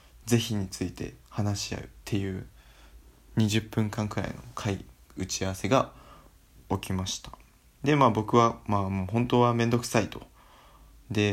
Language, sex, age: Japanese, male, 20-39